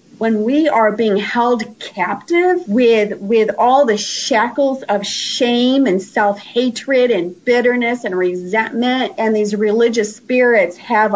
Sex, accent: female, American